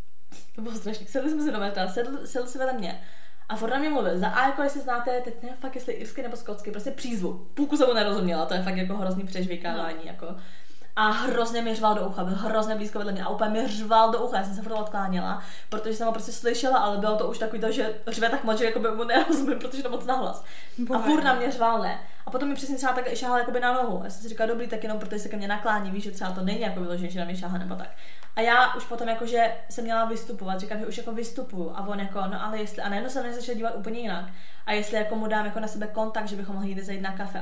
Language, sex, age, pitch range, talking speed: Czech, female, 20-39, 195-245 Hz, 260 wpm